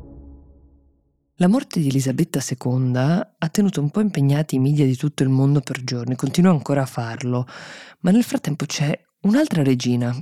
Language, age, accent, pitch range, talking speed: Italian, 20-39, native, 130-165 Hz, 165 wpm